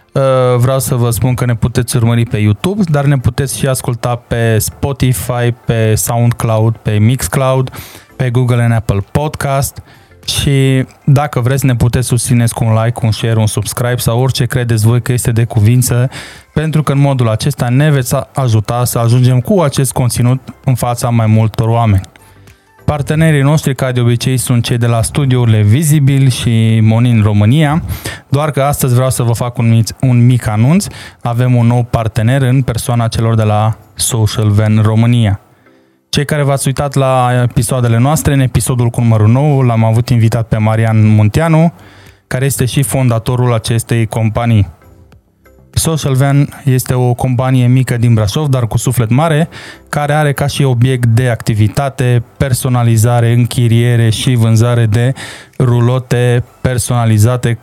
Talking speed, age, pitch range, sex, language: 155 wpm, 20-39, 115-135 Hz, male, Romanian